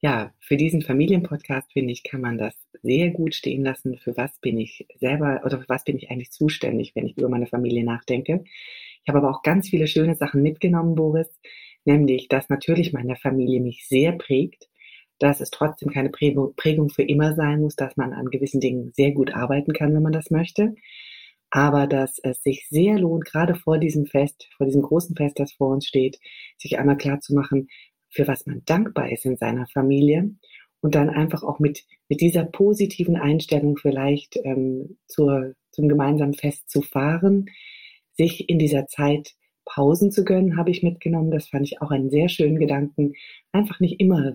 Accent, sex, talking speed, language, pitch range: German, female, 190 wpm, German, 135-165 Hz